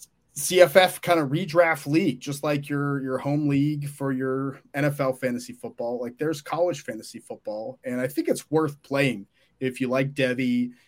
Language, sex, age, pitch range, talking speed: English, male, 30-49, 125-145 Hz, 170 wpm